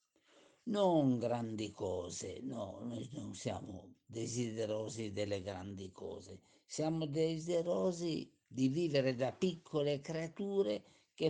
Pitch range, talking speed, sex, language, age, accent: 105-145 Hz, 100 wpm, male, Italian, 50-69, native